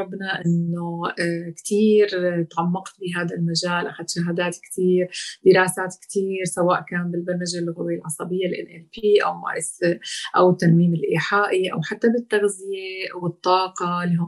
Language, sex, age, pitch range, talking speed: Arabic, female, 30-49, 175-210 Hz, 110 wpm